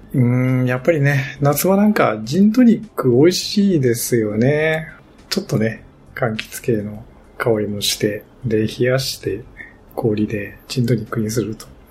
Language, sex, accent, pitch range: Japanese, male, native, 110-140 Hz